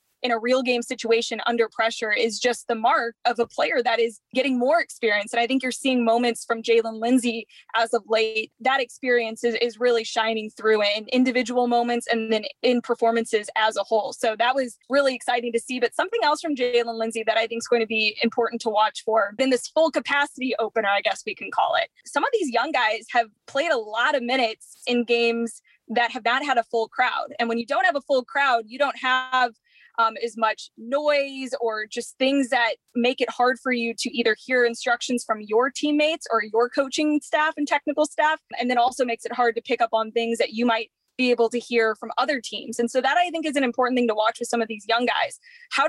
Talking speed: 235 wpm